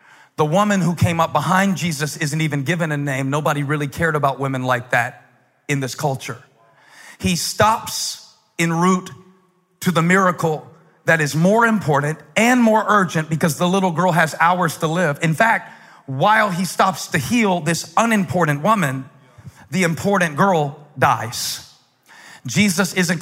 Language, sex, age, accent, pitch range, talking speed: English, male, 40-59, American, 155-200 Hz, 155 wpm